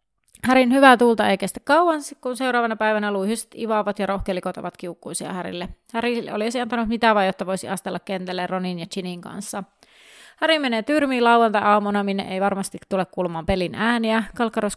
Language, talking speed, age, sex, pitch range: Finnish, 165 wpm, 30-49, female, 195-240 Hz